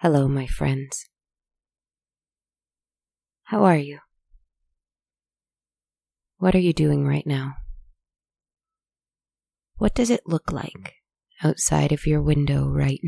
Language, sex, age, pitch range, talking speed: English, female, 20-39, 135-155 Hz, 100 wpm